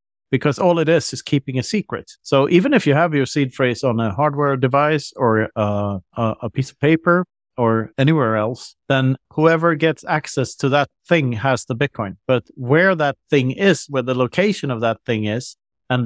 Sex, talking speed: male, 195 wpm